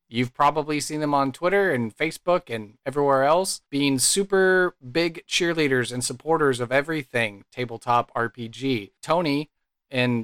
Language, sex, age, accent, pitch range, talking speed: English, male, 30-49, American, 120-145 Hz, 135 wpm